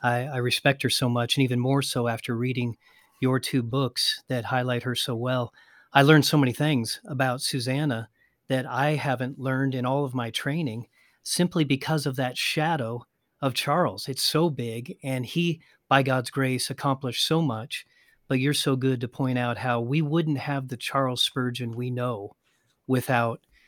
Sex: male